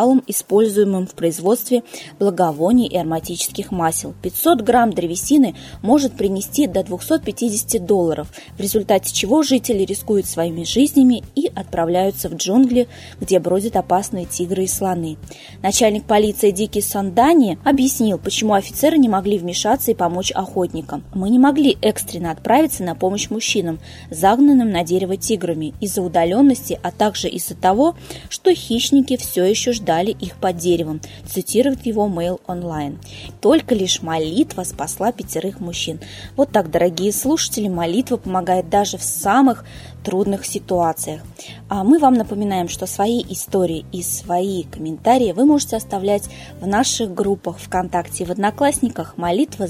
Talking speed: 135 wpm